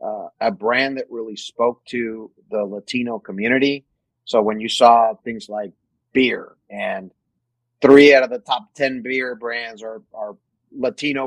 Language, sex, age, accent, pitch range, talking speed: English, male, 30-49, American, 120-150 Hz, 155 wpm